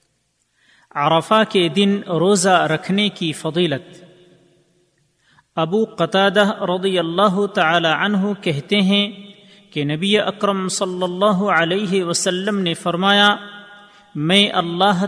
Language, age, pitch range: Urdu, 40-59, 165-205 Hz